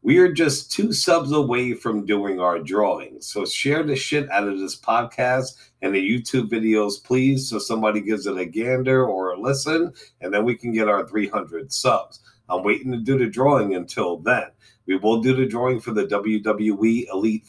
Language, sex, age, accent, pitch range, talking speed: English, male, 50-69, American, 105-130 Hz, 195 wpm